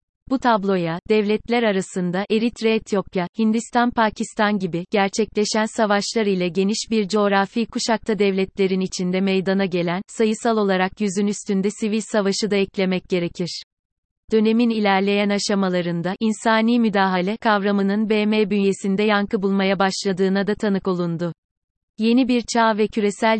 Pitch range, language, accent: 190-220 Hz, Turkish, native